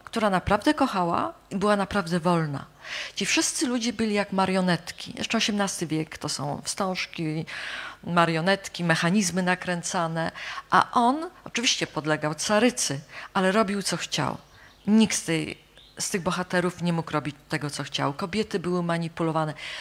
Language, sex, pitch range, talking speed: Polish, female, 170-215 Hz, 135 wpm